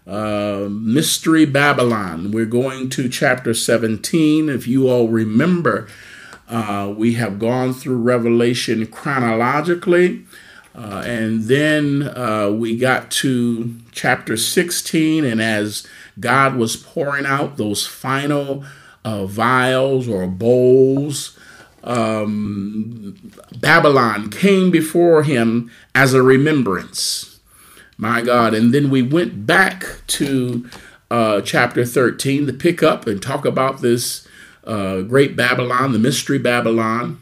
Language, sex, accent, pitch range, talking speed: English, male, American, 115-140 Hz, 115 wpm